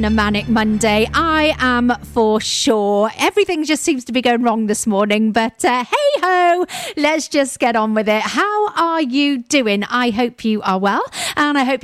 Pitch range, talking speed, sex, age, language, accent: 215-315 Hz, 190 wpm, female, 40-59, English, British